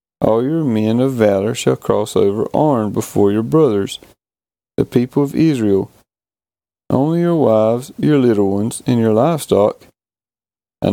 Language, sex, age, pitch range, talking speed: English, male, 40-59, 105-135 Hz, 145 wpm